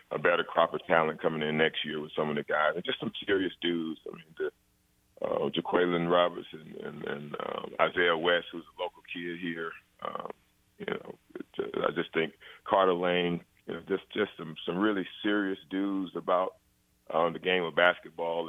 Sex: male